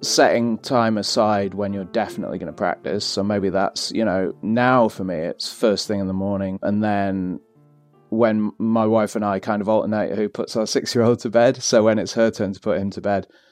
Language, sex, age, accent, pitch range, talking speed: English, male, 30-49, British, 95-115 Hz, 220 wpm